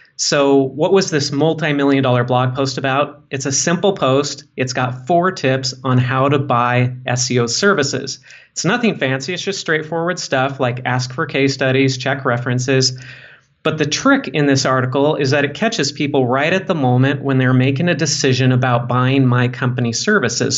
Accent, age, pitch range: American, 30-49, 125-150 Hz